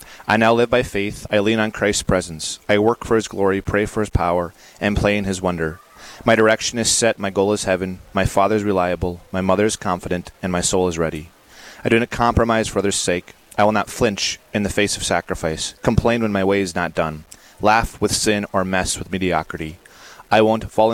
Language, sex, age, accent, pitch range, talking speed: English, male, 30-49, American, 90-110 Hz, 225 wpm